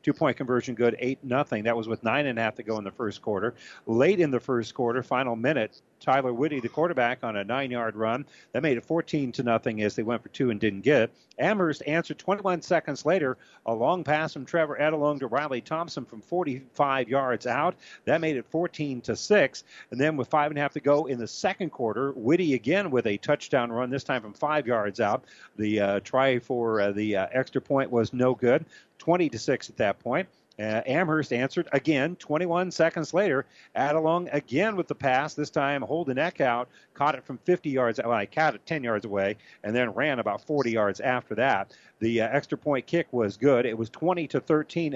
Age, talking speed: 50-69, 210 wpm